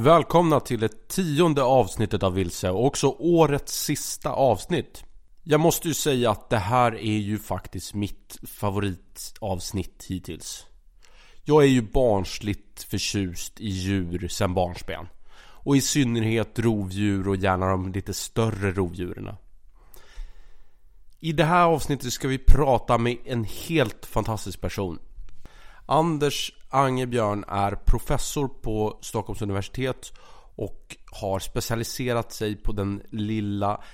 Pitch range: 95-120 Hz